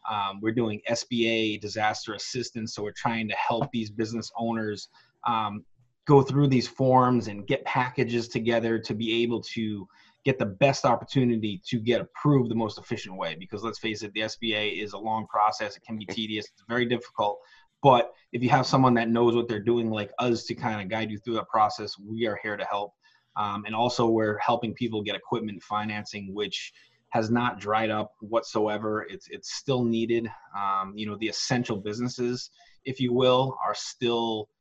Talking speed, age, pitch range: 190 wpm, 20-39, 105-120 Hz